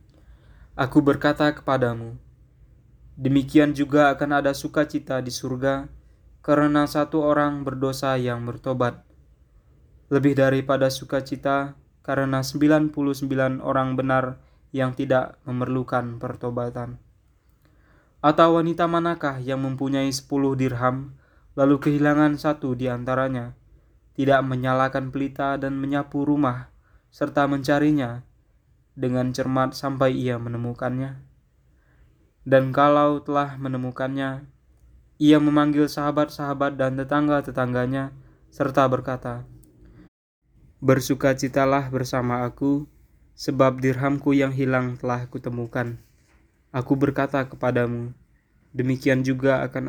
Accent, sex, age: native, male, 20-39